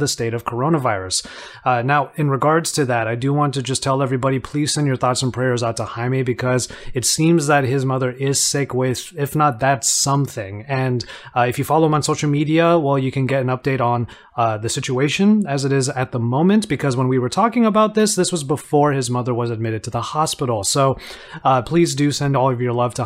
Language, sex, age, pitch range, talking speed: English, male, 30-49, 125-155 Hz, 235 wpm